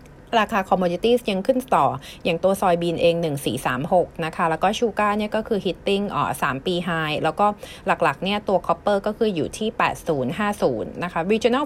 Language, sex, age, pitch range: Thai, female, 30-49, 160-210 Hz